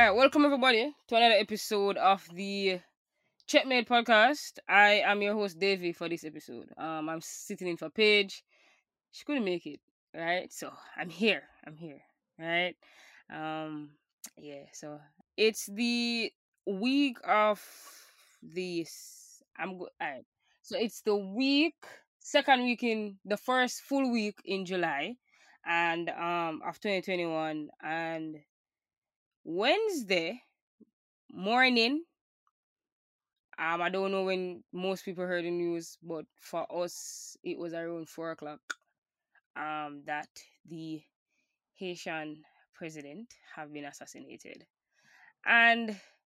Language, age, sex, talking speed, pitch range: English, 20-39, female, 120 wpm, 155-230 Hz